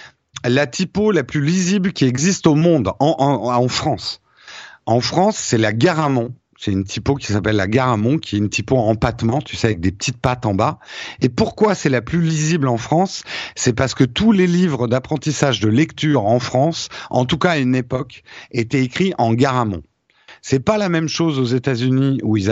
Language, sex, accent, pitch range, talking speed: French, male, French, 120-160 Hz, 210 wpm